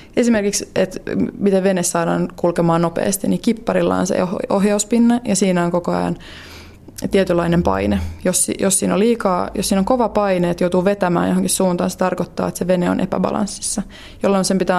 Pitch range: 170-200 Hz